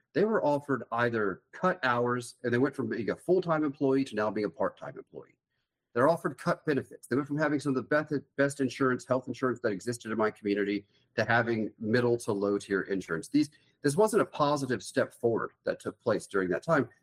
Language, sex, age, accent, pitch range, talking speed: English, male, 40-59, American, 100-140 Hz, 210 wpm